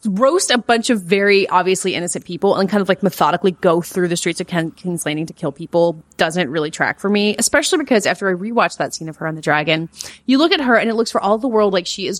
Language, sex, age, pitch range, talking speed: English, female, 30-49, 165-210 Hz, 265 wpm